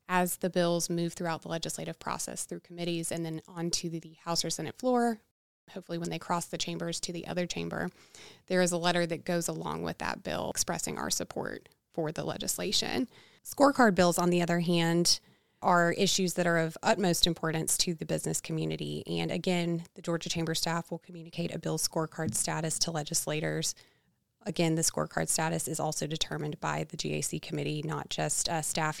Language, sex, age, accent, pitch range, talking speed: English, female, 20-39, American, 155-180 Hz, 185 wpm